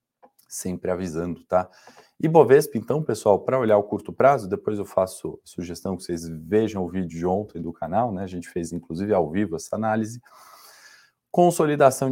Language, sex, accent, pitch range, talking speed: Portuguese, male, Brazilian, 95-115 Hz, 180 wpm